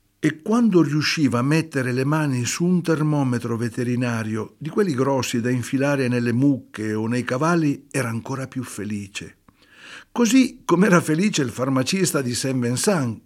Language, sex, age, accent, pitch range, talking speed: Italian, male, 60-79, native, 120-170 Hz, 150 wpm